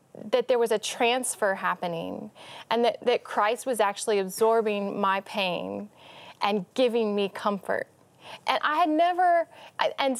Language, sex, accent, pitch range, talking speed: English, female, American, 205-265 Hz, 140 wpm